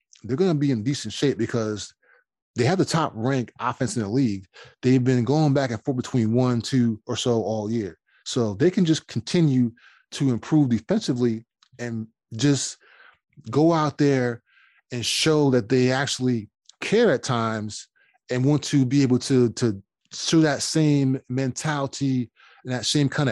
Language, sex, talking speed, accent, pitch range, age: English, male, 170 wpm, American, 120-145 Hz, 20-39